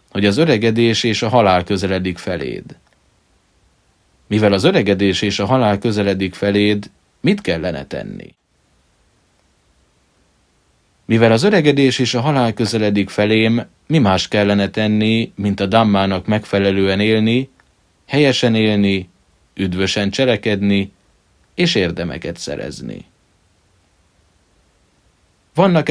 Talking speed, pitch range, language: 100 wpm, 95-115 Hz, Hungarian